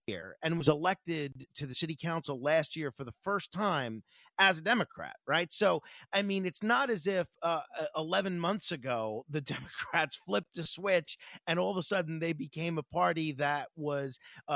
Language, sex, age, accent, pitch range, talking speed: English, male, 40-59, American, 160-210 Hz, 185 wpm